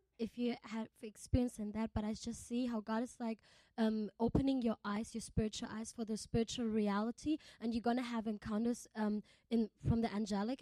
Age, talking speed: 20-39, 205 wpm